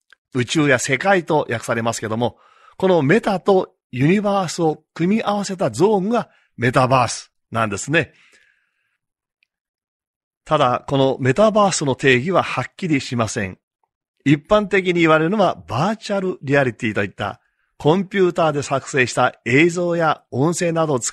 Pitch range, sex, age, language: 125-185 Hz, male, 40-59, Japanese